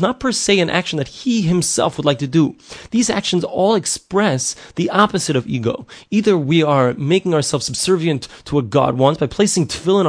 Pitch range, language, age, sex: 135-180 Hz, English, 30-49, male